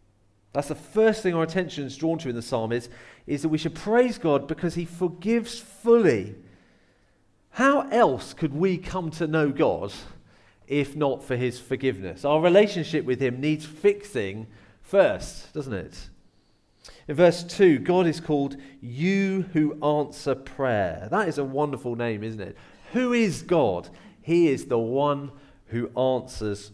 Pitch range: 115-165 Hz